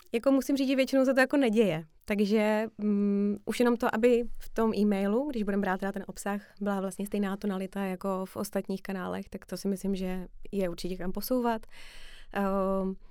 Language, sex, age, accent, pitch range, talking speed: Czech, female, 20-39, native, 185-220 Hz, 190 wpm